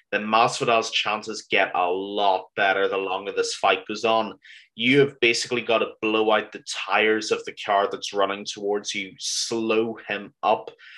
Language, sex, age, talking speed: English, male, 30-49, 175 wpm